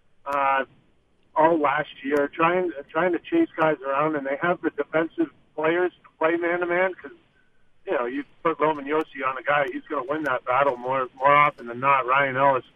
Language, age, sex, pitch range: English, 40-59, male, 140-165 Hz